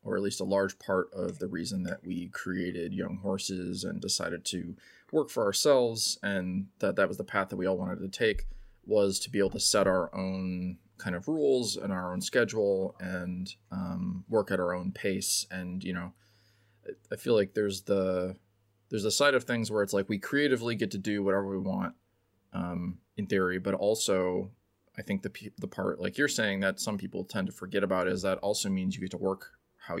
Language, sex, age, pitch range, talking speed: English, male, 20-39, 90-105 Hz, 215 wpm